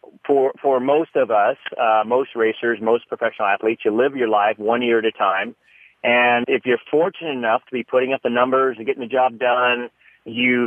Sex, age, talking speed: male, 40-59, 210 wpm